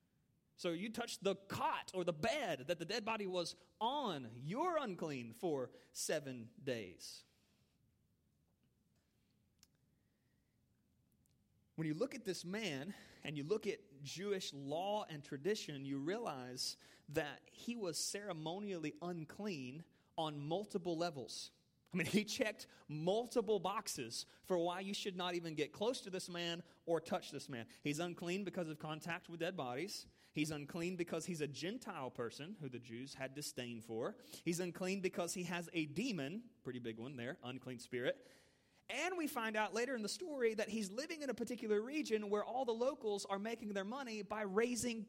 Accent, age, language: American, 30-49, English